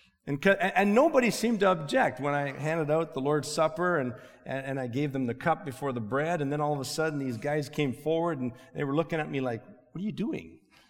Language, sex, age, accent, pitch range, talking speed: English, male, 40-59, American, 135-180 Hz, 240 wpm